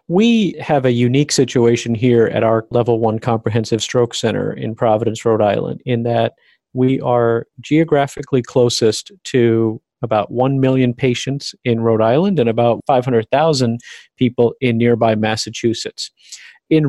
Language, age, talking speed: English, 40-59, 140 wpm